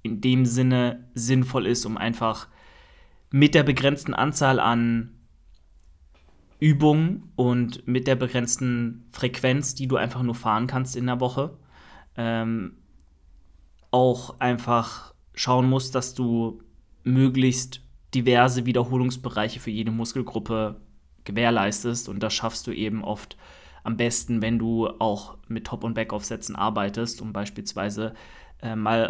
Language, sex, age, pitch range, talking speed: German, male, 20-39, 110-130 Hz, 125 wpm